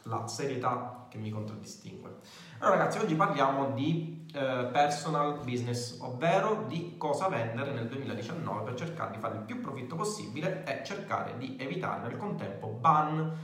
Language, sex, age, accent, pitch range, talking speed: Italian, male, 30-49, native, 125-165 Hz, 150 wpm